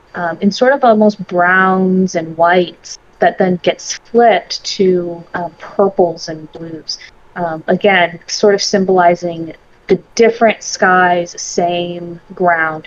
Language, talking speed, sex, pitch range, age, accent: English, 125 wpm, female, 175-210 Hz, 20-39, American